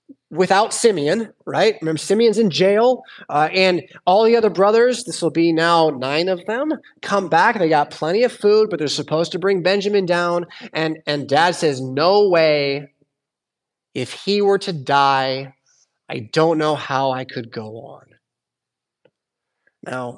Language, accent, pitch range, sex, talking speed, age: English, American, 140-195 Hz, male, 160 wpm, 20-39